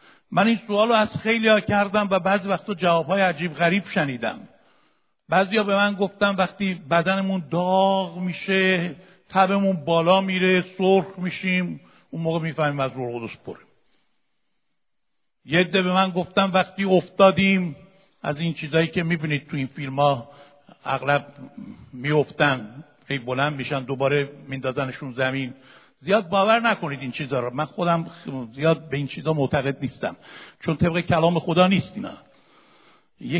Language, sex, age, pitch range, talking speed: Persian, male, 60-79, 145-190 Hz, 140 wpm